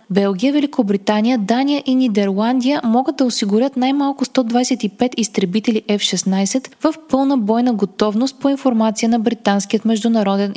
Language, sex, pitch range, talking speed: Bulgarian, female, 200-260 Hz, 120 wpm